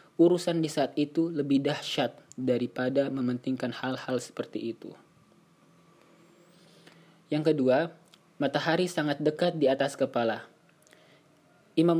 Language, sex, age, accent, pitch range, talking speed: Indonesian, male, 20-39, native, 125-155 Hz, 100 wpm